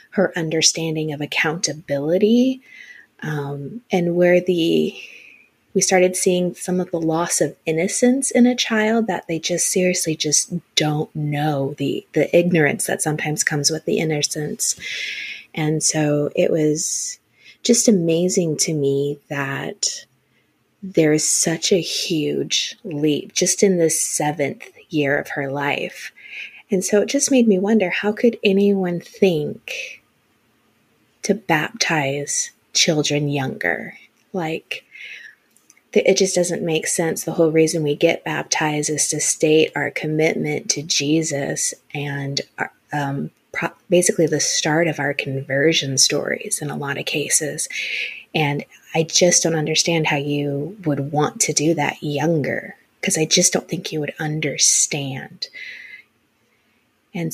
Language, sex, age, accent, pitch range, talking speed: English, female, 30-49, American, 150-185 Hz, 135 wpm